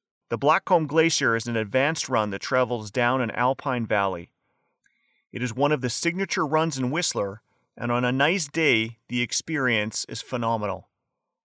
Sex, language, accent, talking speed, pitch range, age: male, English, American, 160 wpm, 115-155 Hz, 30-49